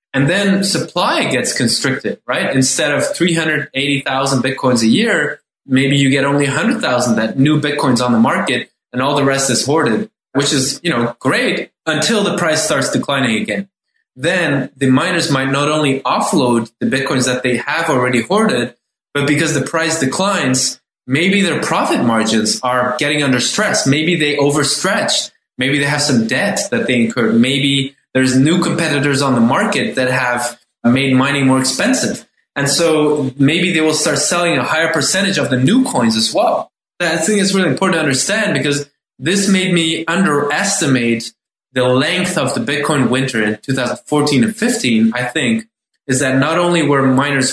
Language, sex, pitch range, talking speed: English, male, 125-160 Hz, 180 wpm